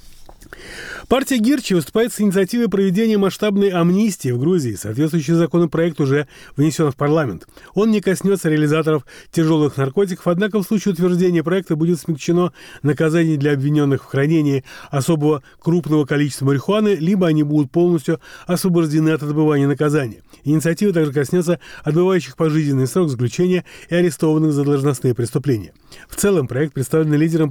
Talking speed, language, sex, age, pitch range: 135 wpm, Russian, male, 30-49, 150-180 Hz